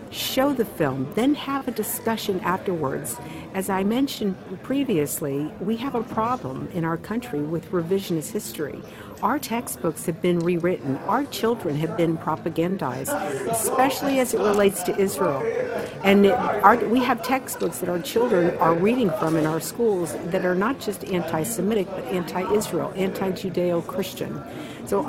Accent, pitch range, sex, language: American, 165-215 Hz, female, English